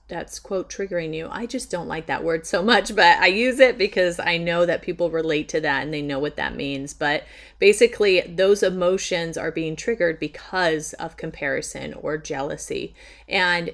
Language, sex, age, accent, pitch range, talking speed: English, female, 30-49, American, 155-190 Hz, 190 wpm